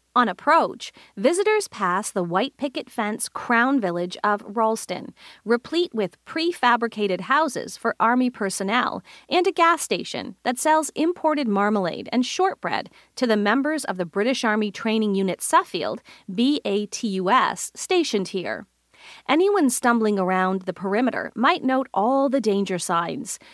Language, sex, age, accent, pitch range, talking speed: English, female, 40-59, American, 200-285 Hz, 135 wpm